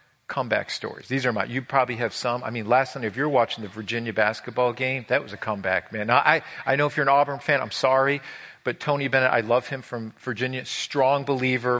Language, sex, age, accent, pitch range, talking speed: English, male, 40-59, American, 125-165 Hz, 235 wpm